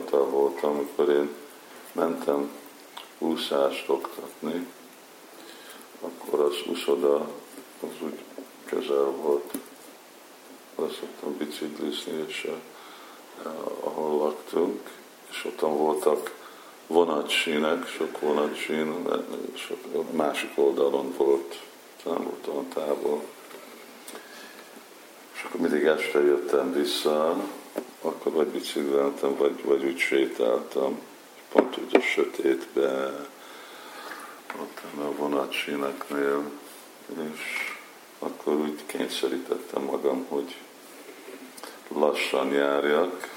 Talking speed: 80 wpm